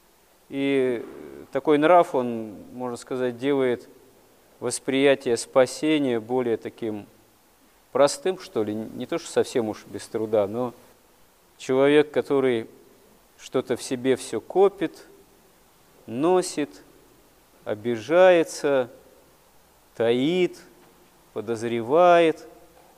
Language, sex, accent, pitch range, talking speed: Russian, male, native, 115-150 Hz, 85 wpm